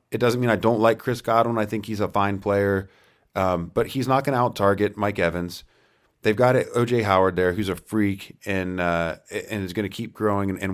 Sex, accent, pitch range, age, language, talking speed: male, American, 90-115 Hz, 30-49, English, 225 wpm